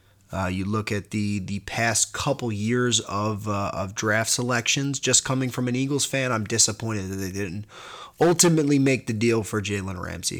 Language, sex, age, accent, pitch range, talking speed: English, male, 30-49, American, 105-125 Hz, 185 wpm